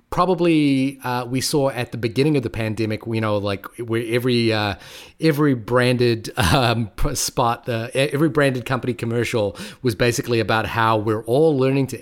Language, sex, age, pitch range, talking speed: English, male, 30-49, 115-145 Hz, 165 wpm